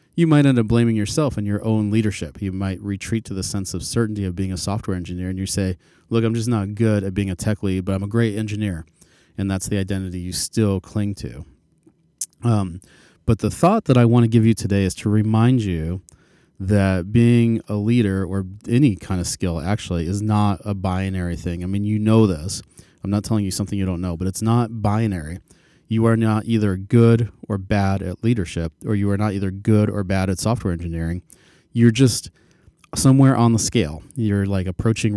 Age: 30-49